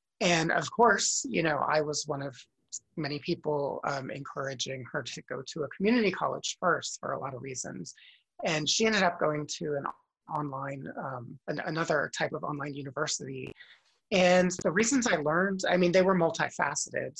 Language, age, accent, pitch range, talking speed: English, 30-49, American, 145-180 Hz, 175 wpm